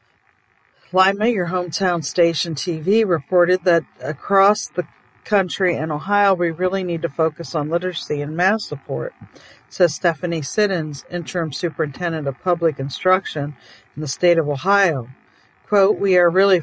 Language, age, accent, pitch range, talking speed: English, 50-69, American, 150-180 Hz, 140 wpm